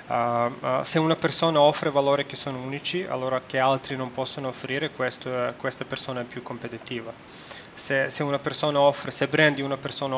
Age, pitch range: 20-39, 130-150 Hz